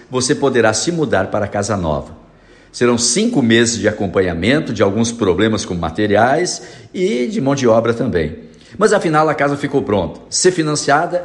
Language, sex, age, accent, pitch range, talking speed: Portuguese, male, 60-79, Brazilian, 105-145 Hz, 170 wpm